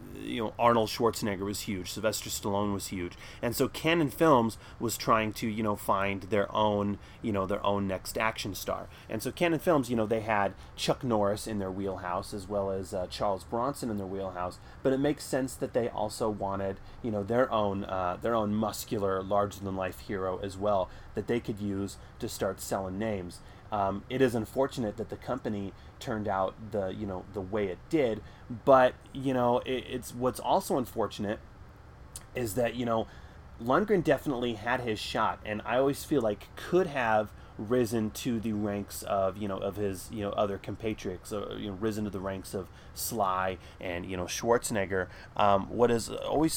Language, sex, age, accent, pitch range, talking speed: English, male, 30-49, American, 100-120 Hz, 195 wpm